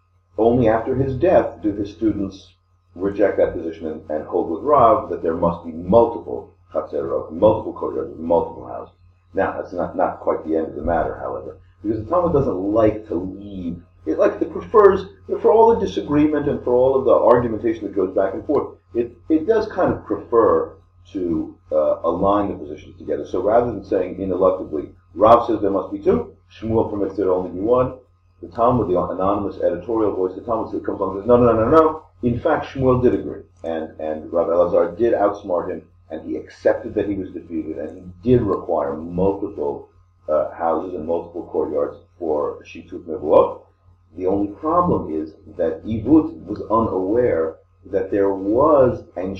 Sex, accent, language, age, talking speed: male, American, English, 40-59, 190 wpm